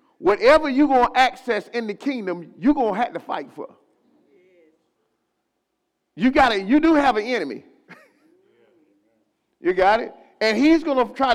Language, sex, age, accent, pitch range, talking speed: English, male, 40-59, American, 225-310 Hz, 165 wpm